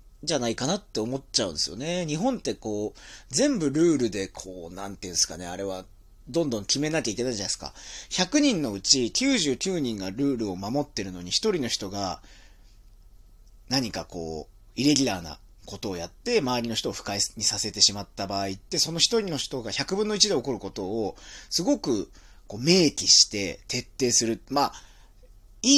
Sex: male